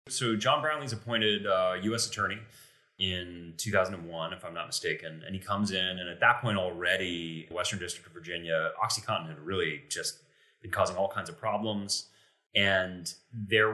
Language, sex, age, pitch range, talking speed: English, male, 30-49, 90-115 Hz, 165 wpm